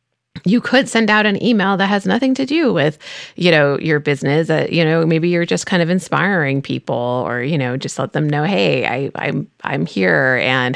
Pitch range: 140-205 Hz